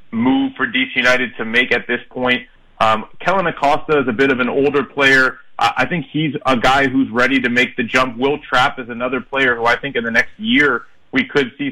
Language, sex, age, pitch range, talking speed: English, male, 30-49, 125-150 Hz, 230 wpm